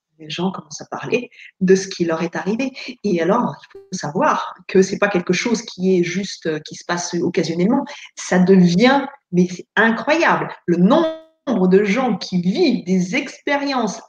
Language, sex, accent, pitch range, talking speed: French, female, French, 180-230 Hz, 175 wpm